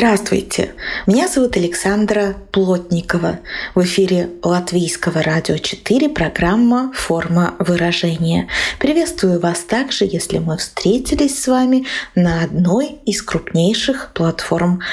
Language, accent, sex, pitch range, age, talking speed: Russian, native, female, 170-225 Hz, 20-39, 105 wpm